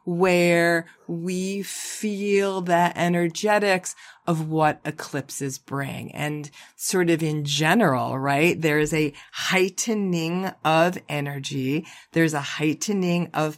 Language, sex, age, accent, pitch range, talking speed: English, female, 40-59, American, 160-215 Hz, 110 wpm